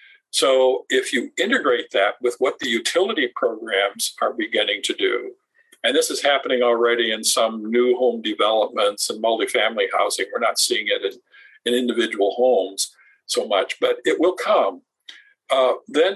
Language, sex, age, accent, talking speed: English, male, 50-69, American, 160 wpm